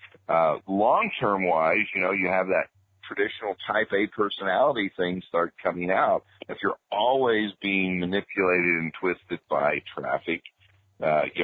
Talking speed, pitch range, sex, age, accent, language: 135 wpm, 85-105 Hz, male, 50-69, American, English